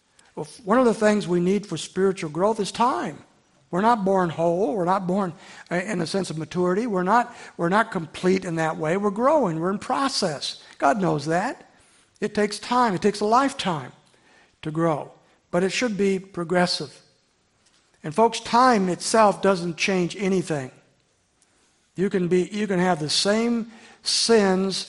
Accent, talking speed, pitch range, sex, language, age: American, 170 wpm, 175-210 Hz, male, English, 60-79